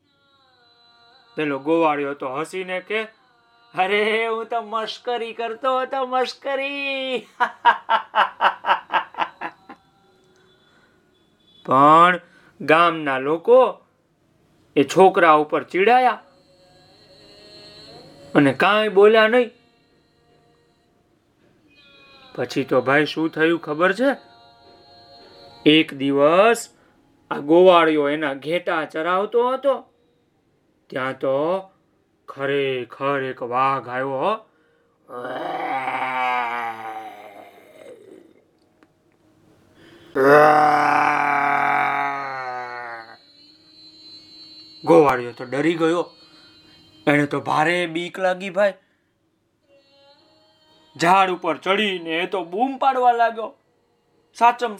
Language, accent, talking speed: Gujarati, native, 50 wpm